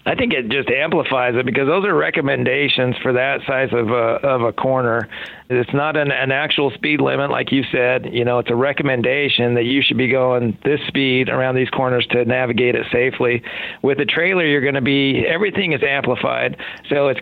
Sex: male